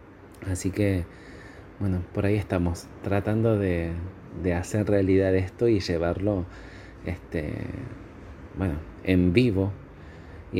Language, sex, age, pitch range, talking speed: Spanish, male, 30-49, 90-105 Hz, 95 wpm